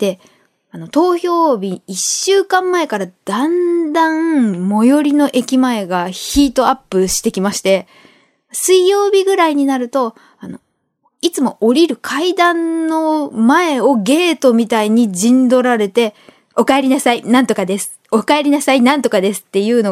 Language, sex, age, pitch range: Japanese, female, 20-39, 215-330 Hz